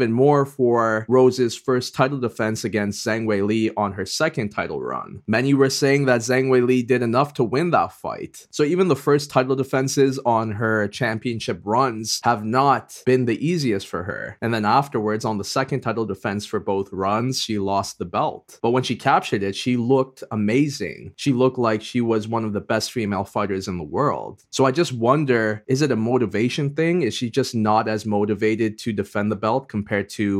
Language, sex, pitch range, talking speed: English, male, 105-130 Hz, 205 wpm